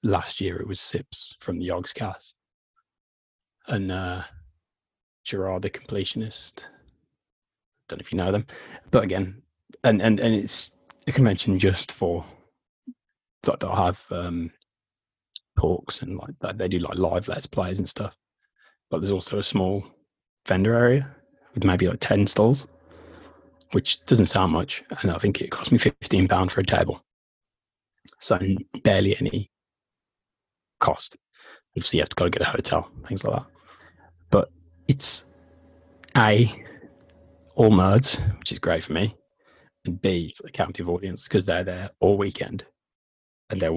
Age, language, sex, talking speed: 20-39, English, male, 155 wpm